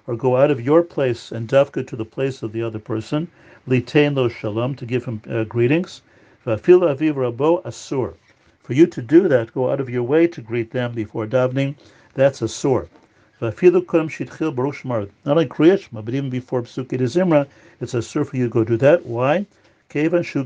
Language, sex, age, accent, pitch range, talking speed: English, male, 50-69, American, 115-145 Hz, 180 wpm